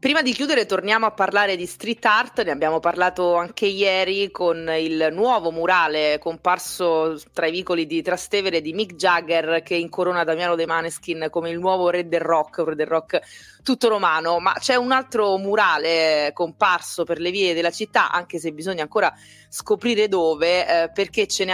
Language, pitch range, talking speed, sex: Italian, 160-195 Hz, 175 wpm, female